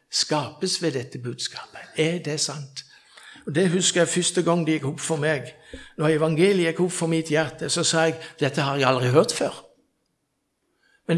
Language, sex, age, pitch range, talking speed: English, male, 60-79, 145-205 Hz, 175 wpm